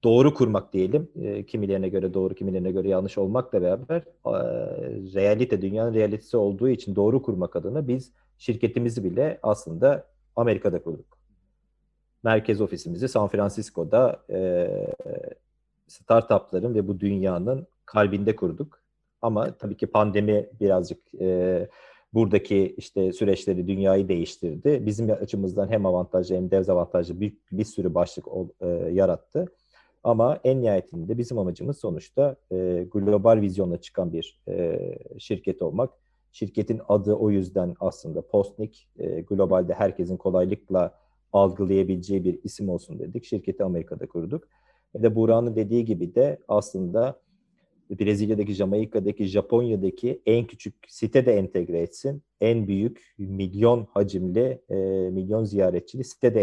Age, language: 40-59, Turkish